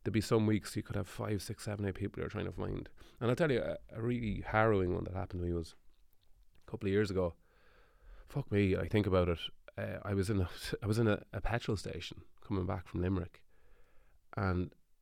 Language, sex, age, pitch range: English, male, 30-49, 90-105 Hz